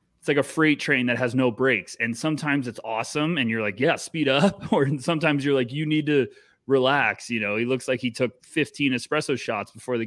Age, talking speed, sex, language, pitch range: 20-39, 230 wpm, male, English, 120-155 Hz